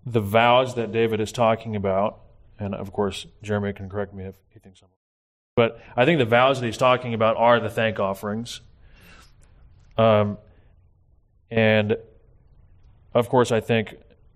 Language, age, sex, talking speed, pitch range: English, 20-39, male, 160 wpm, 100-115 Hz